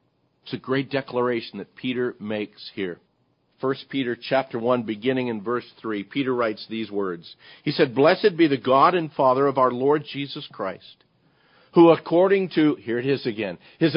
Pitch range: 125-160 Hz